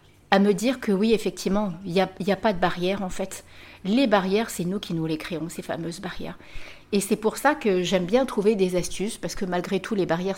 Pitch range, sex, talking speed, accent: 175-215 Hz, female, 250 wpm, French